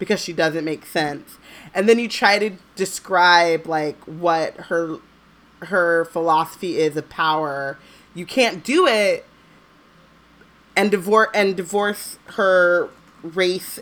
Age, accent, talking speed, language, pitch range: 20-39, American, 125 wpm, English, 170-220 Hz